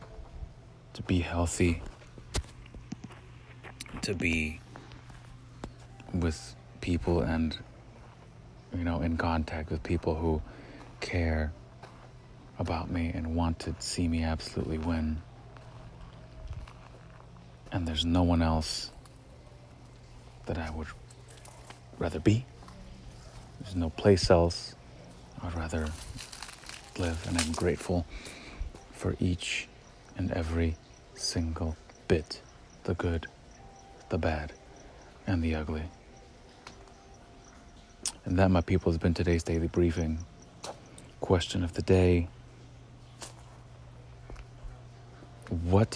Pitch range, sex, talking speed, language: 80-120 Hz, male, 95 wpm, English